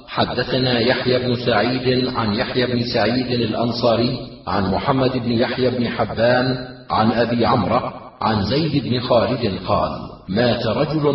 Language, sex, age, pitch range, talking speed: Arabic, male, 40-59, 115-130 Hz, 135 wpm